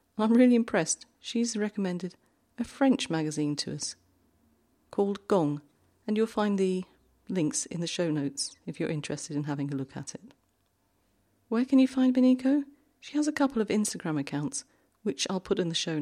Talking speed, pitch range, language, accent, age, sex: 180 wpm, 140-220 Hz, English, British, 40-59, female